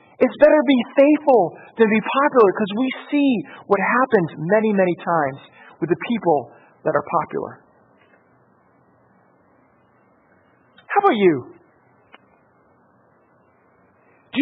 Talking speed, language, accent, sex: 105 wpm, English, American, male